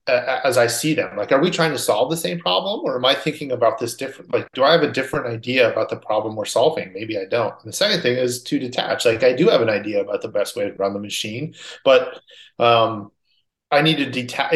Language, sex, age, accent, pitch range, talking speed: English, male, 30-49, American, 115-145 Hz, 255 wpm